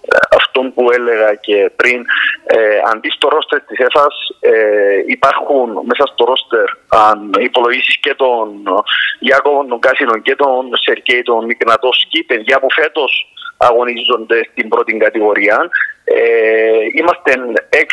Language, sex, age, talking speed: Greek, male, 40-59, 120 wpm